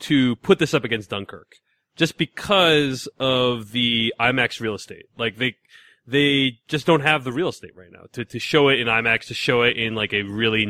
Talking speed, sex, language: 210 wpm, male, English